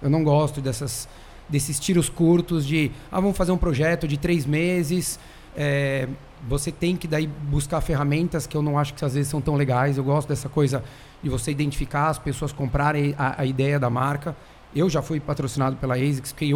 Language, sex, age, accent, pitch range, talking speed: Portuguese, male, 30-49, Brazilian, 140-160 Hz, 200 wpm